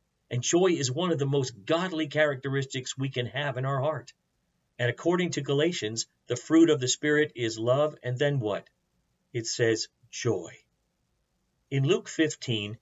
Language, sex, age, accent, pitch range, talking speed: English, male, 50-69, American, 110-145 Hz, 165 wpm